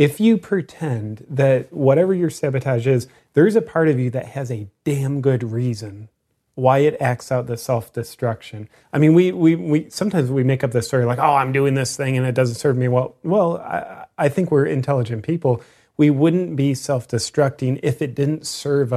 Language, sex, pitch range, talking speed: English, male, 115-140 Hz, 200 wpm